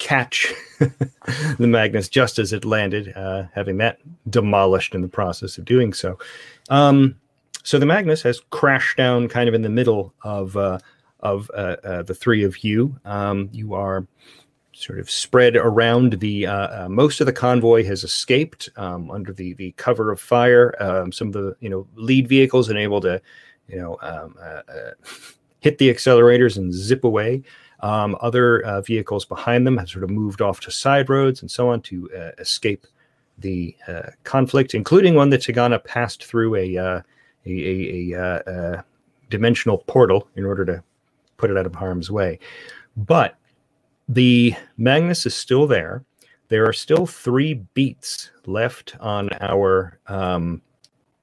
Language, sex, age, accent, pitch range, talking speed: English, male, 30-49, American, 95-125 Hz, 170 wpm